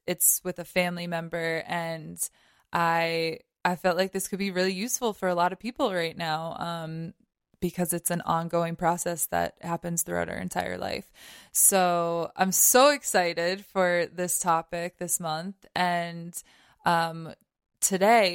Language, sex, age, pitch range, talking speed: English, female, 20-39, 170-200 Hz, 150 wpm